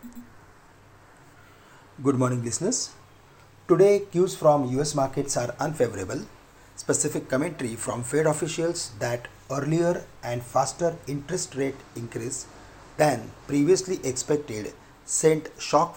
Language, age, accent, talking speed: English, 40-59, Indian, 100 wpm